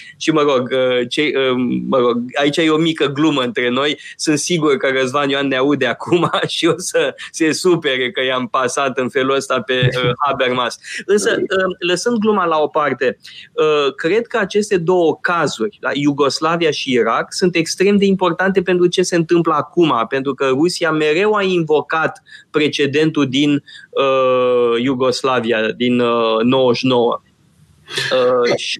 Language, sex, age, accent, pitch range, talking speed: Romanian, male, 20-39, native, 130-170 Hz, 145 wpm